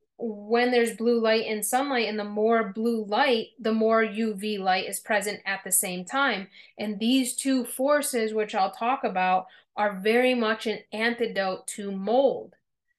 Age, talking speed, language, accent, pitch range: 30-49, 165 wpm, English, American, 210-245 Hz